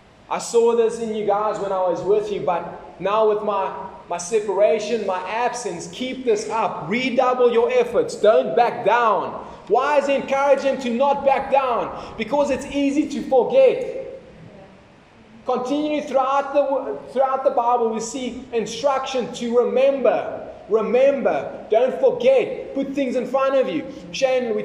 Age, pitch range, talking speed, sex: 20-39, 220-275 Hz, 155 wpm, male